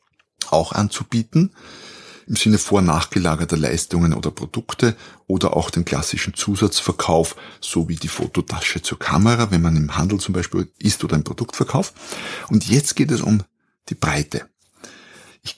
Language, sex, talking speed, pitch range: German, male, 145 wpm, 85-115 Hz